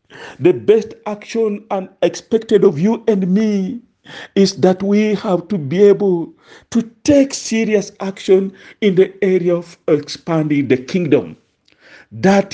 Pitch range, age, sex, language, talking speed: 185-220 Hz, 50-69, male, English, 130 wpm